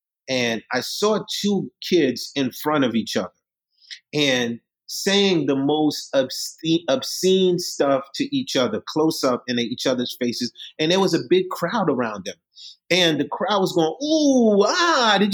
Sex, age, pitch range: male, 30-49, 135-185 Hz